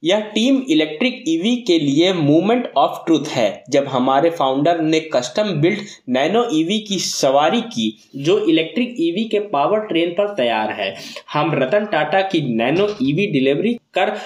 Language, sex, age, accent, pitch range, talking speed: Hindi, male, 20-39, native, 150-215 Hz, 160 wpm